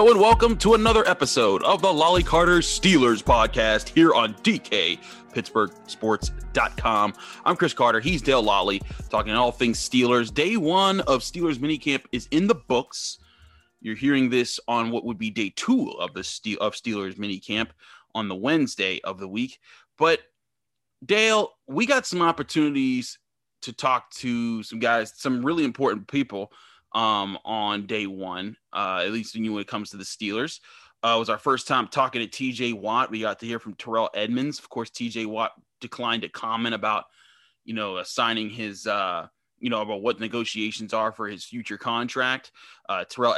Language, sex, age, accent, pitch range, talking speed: English, male, 30-49, American, 110-155 Hz, 175 wpm